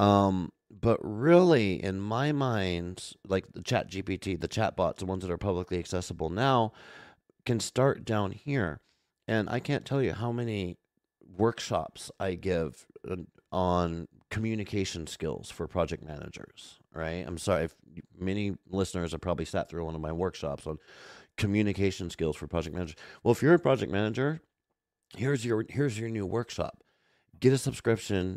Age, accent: 30-49, American